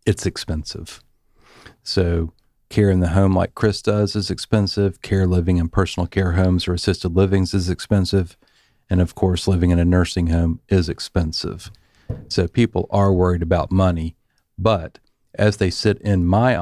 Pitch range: 85-100 Hz